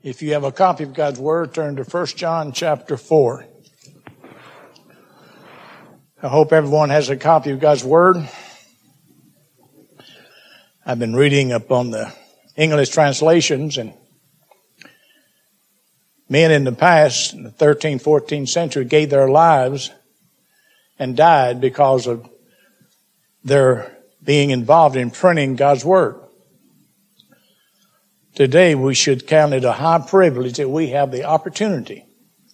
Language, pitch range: English, 135-165 Hz